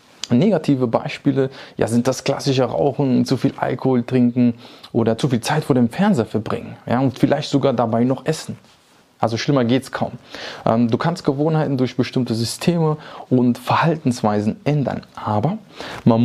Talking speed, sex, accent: 155 wpm, male, German